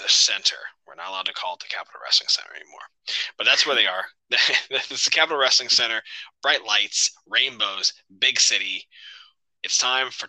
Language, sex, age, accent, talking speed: English, male, 20-39, American, 180 wpm